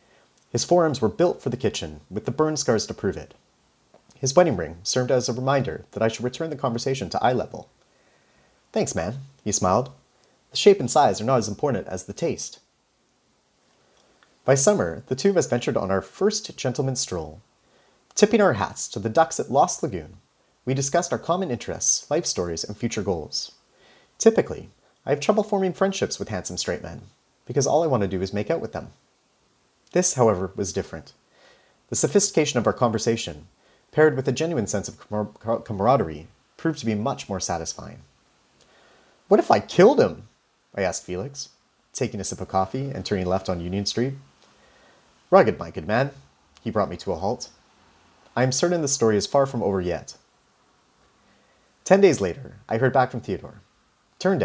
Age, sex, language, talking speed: 30-49, male, English, 185 wpm